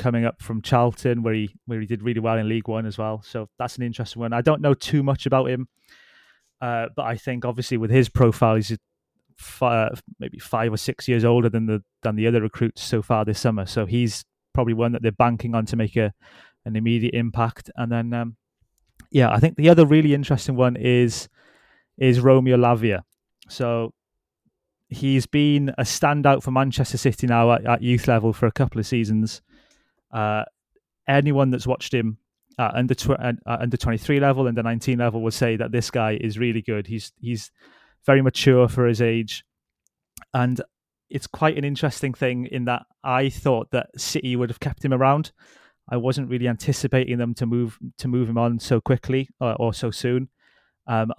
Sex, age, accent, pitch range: male, 20-39, British, 115-130 Hz